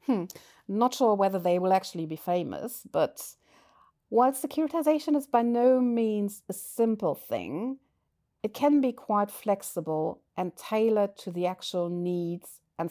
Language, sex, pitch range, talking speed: German, female, 160-215 Hz, 145 wpm